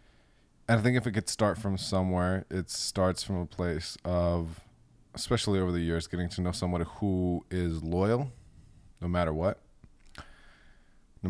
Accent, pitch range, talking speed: American, 85-100 Hz, 155 wpm